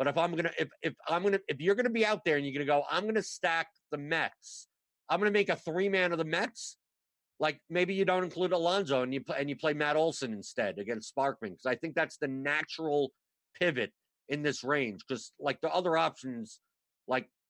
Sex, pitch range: male, 135-175 Hz